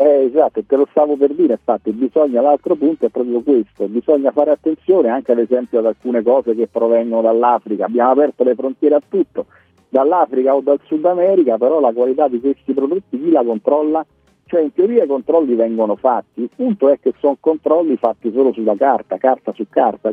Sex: male